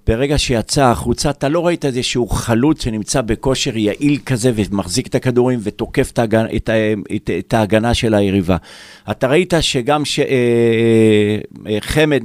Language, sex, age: Hebrew, male, 50-69